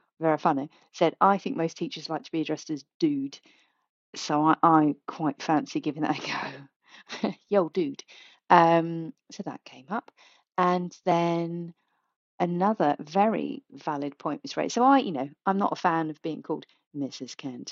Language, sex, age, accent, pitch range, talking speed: English, female, 30-49, British, 155-200 Hz, 170 wpm